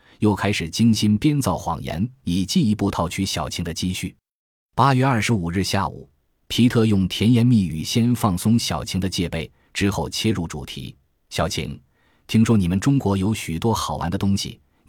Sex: male